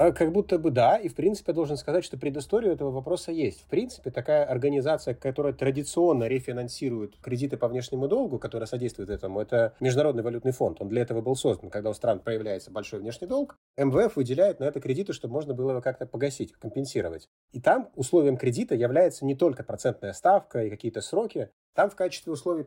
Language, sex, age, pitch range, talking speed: Russian, male, 30-49, 125-165 Hz, 195 wpm